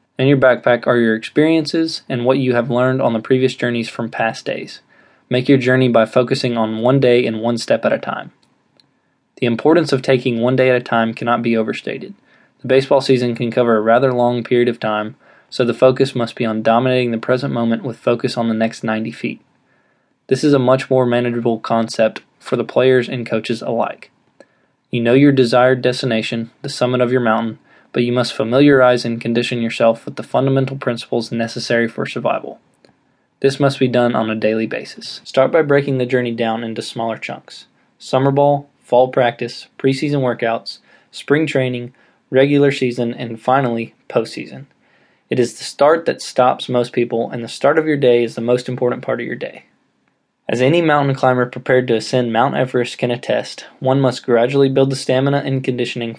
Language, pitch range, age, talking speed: English, 115-130 Hz, 20-39, 190 wpm